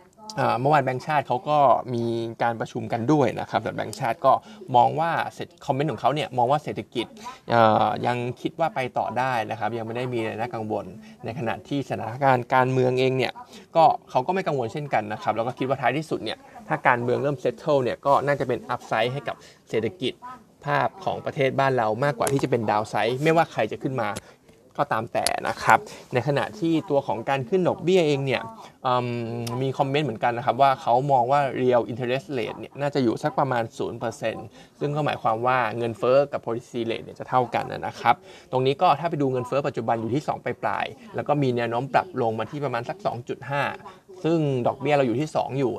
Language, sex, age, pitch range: Thai, male, 20-39, 115-145 Hz